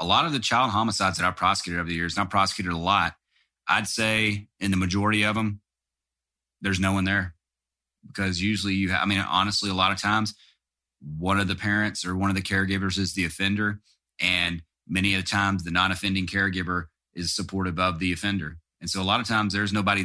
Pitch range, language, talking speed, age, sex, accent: 85-95 Hz, English, 215 wpm, 30-49, male, American